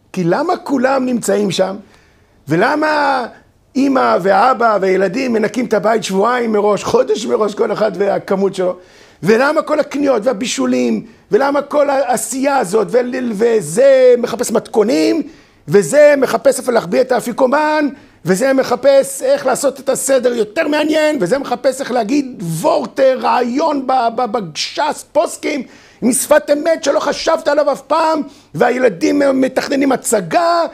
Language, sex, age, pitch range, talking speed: Hebrew, male, 50-69, 215-290 Hz, 125 wpm